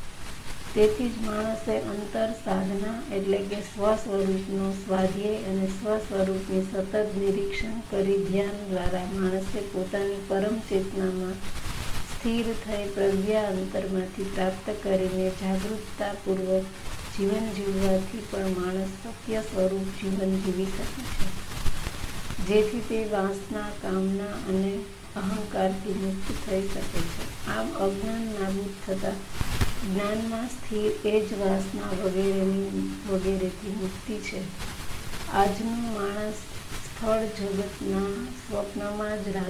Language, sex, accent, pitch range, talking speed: Gujarati, female, native, 190-210 Hz, 45 wpm